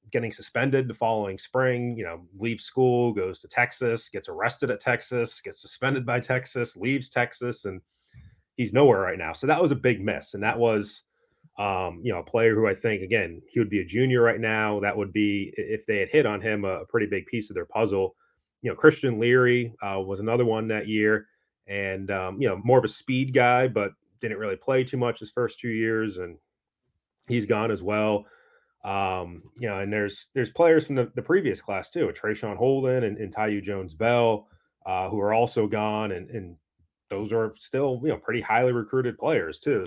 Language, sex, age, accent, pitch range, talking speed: English, male, 30-49, American, 105-130 Hz, 210 wpm